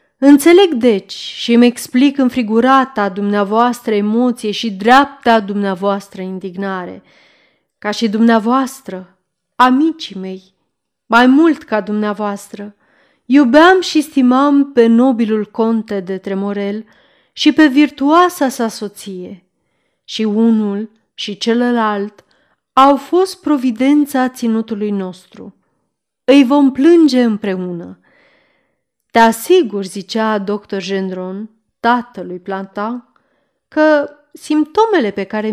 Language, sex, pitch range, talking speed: Romanian, female, 200-275 Hz, 100 wpm